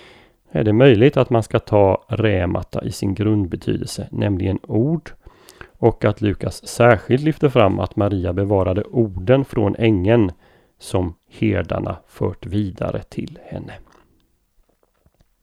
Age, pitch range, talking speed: 30-49, 100-115 Hz, 120 wpm